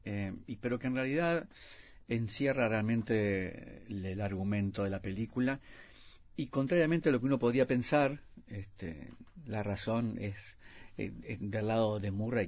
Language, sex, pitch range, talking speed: Spanish, male, 100-120 Hz, 155 wpm